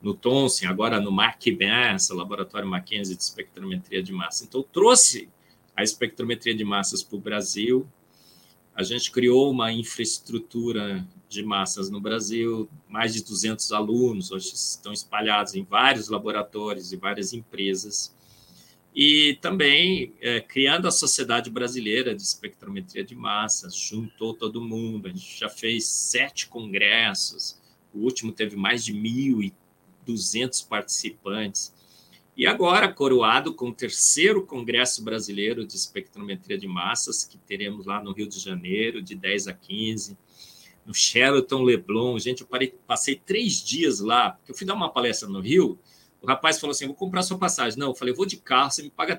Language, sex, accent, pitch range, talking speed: Portuguese, male, Brazilian, 110-185 Hz, 155 wpm